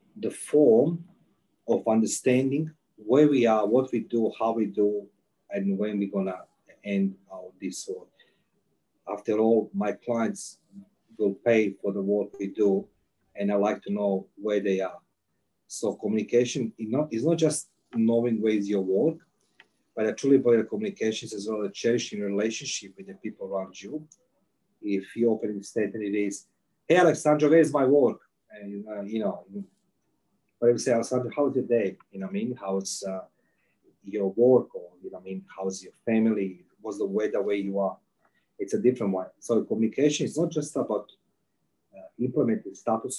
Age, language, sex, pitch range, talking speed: 40-59, English, male, 100-125 Hz, 175 wpm